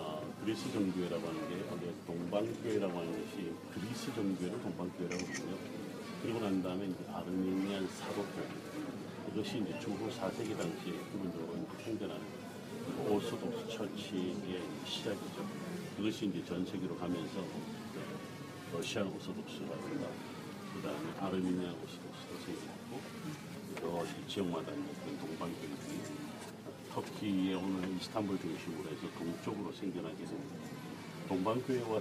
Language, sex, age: Korean, male, 50-69